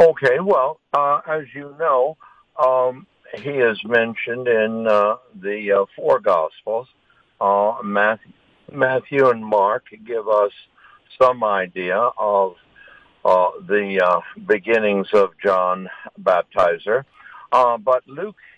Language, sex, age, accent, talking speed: English, male, 60-79, American, 115 wpm